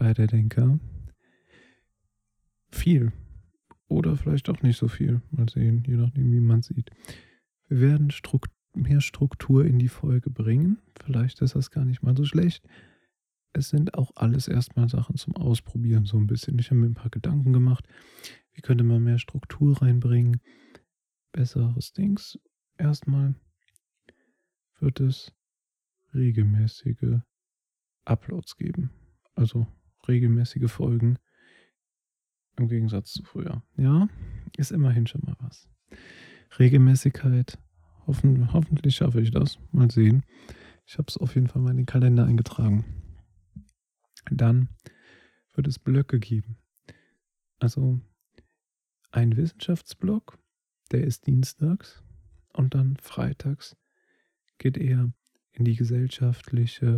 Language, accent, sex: German, German, male